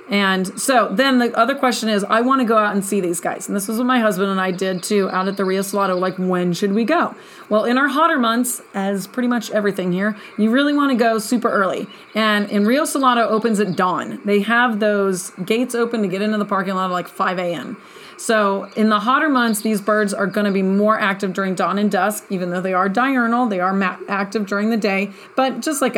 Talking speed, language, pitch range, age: 245 wpm, English, 195-245 Hz, 30-49